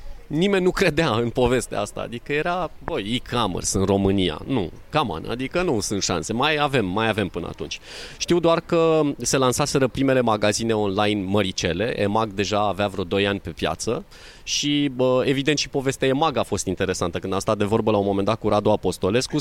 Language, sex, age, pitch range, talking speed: Romanian, male, 30-49, 105-155 Hz, 190 wpm